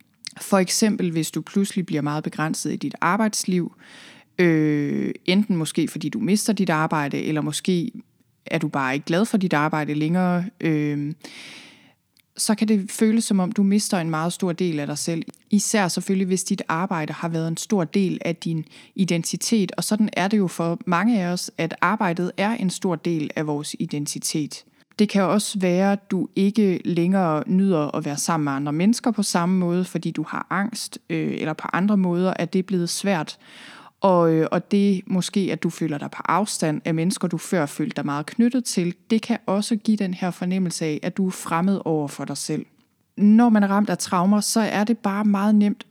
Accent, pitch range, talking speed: native, 165-205 Hz, 205 wpm